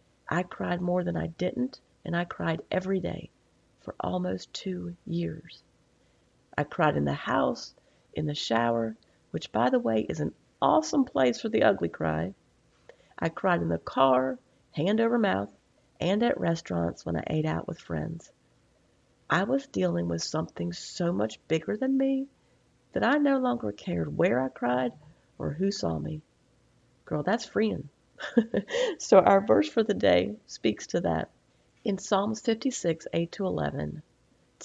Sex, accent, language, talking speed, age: female, American, English, 160 wpm, 40-59